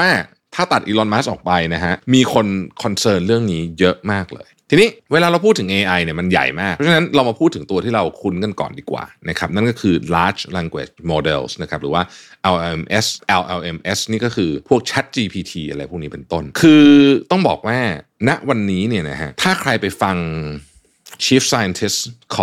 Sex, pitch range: male, 85-115 Hz